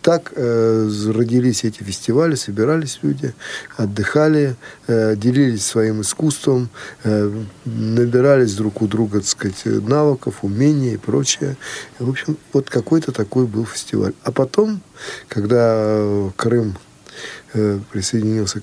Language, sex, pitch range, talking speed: Russian, male, 110-140 Hz, 100 wpm